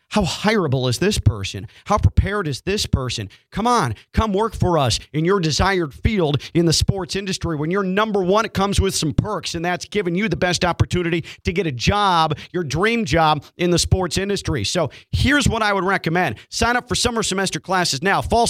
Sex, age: male, 40-59